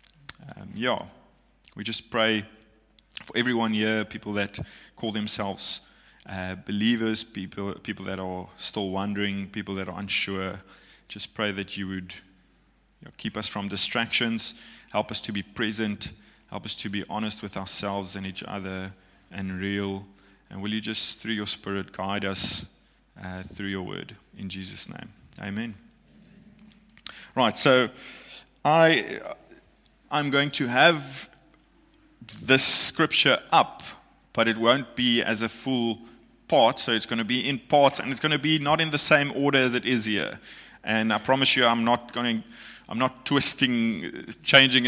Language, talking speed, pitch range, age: English, 155 wpm, 100-120 Hz, 20-39